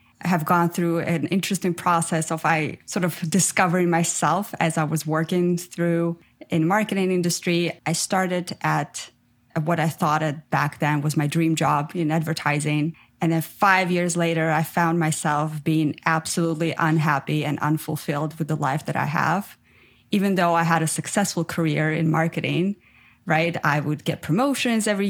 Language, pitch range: English, 155-185 Hz